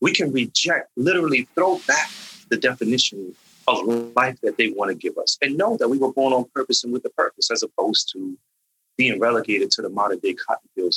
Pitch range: 120-160 Hz